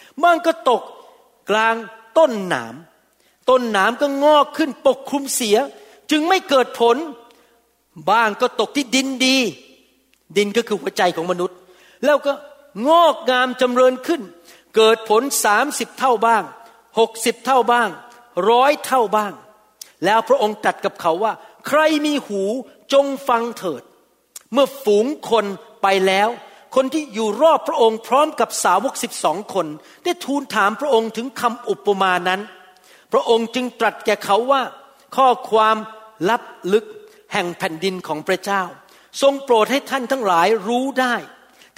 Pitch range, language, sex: 205-265 Hz, Thai, male